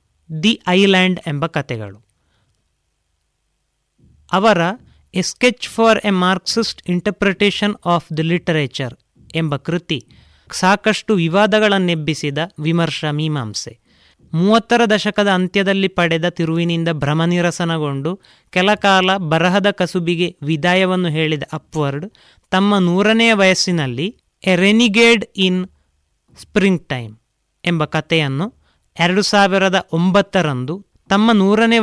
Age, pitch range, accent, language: 30-49, 155-195 Hz, native, Kannada